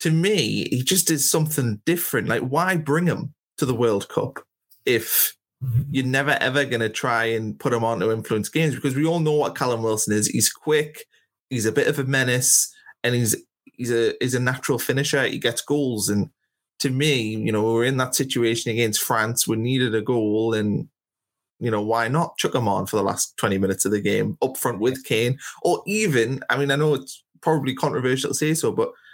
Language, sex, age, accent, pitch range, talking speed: English, male, 20-39, British, 110-145 Hz, 215 wpm